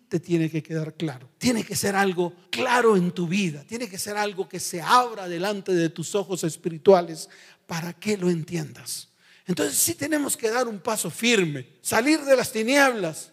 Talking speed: 190 wpm